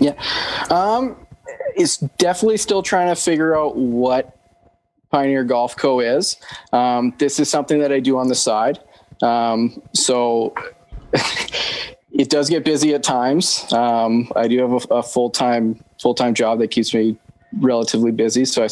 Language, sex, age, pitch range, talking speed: English, male, 20-39, 115-130 Hz, 155 wpm